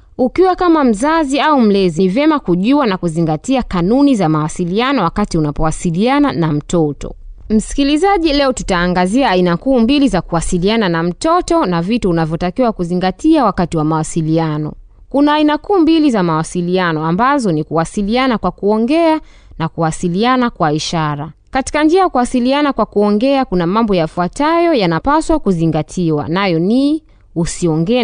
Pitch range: 165-270 Hz